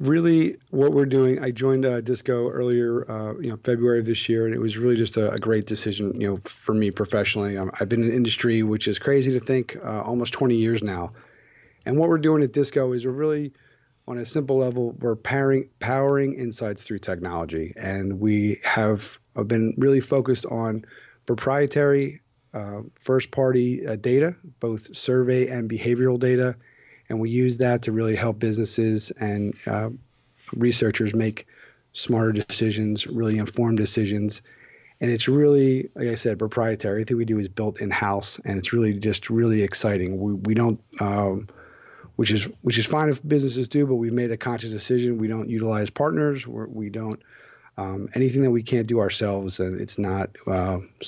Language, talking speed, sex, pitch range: English, 180 wpm, male, 105-125 Hz